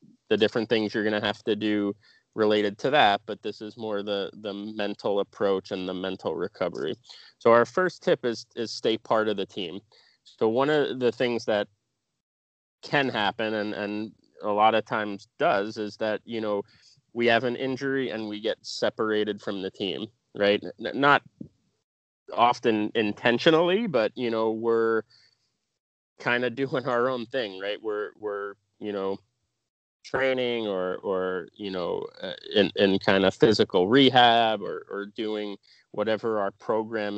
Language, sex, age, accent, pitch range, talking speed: English, male, 20-39, American, 100-115 Hz, 165 wpm